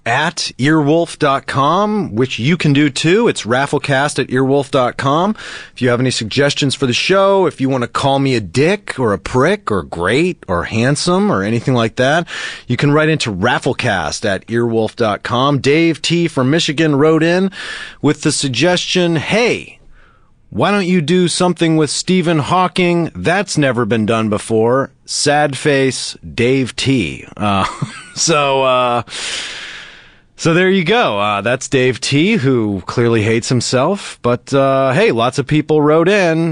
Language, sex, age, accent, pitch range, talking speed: English, male, 30-49, American, 110-155 Hz, 155 wpm